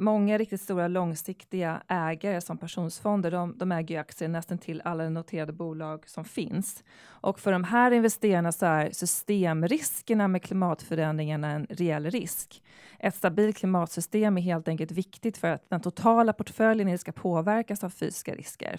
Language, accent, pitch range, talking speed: Swedish, native, 170-210 Hz, 155 wpm